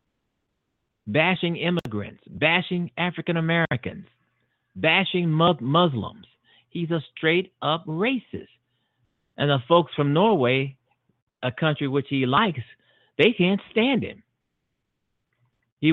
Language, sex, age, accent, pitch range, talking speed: English, male, 50-69, American, 115-155 Hz, 95 wpm